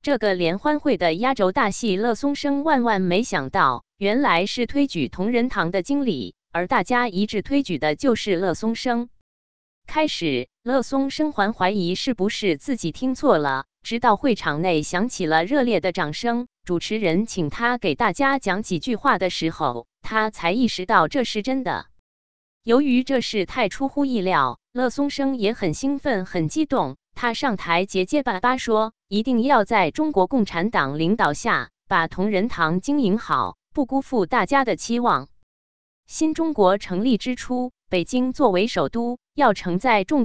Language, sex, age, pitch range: Chinese, female, 20-39, 180-260 Hz